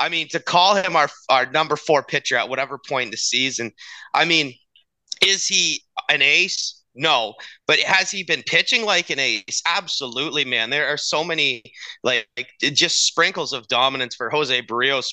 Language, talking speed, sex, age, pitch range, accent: English, 180 wpm, male, 30-49, 125-165 Hz, American